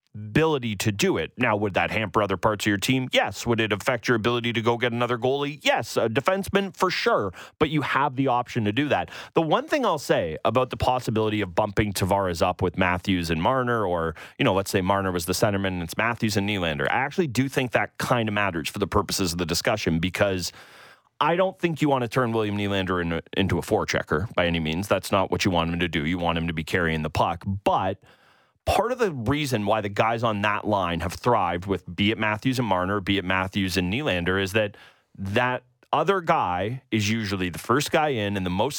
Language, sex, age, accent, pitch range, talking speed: English, male, 30-49, American, 95-125 Hz, 235 wpm